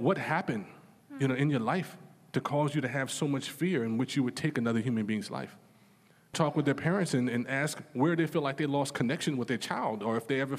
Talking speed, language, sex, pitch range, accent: 255 wpm, English, male, 125-165 Hz, American